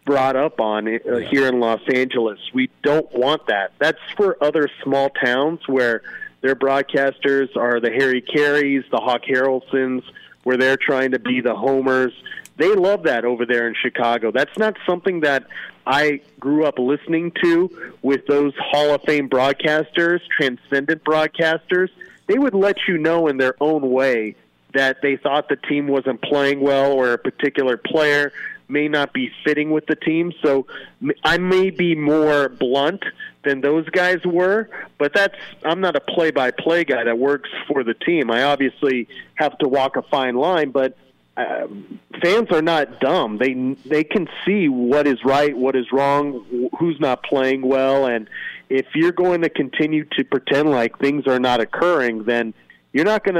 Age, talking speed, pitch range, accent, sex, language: 40-59, 170 wpm, 130-155 Hz, American, male, English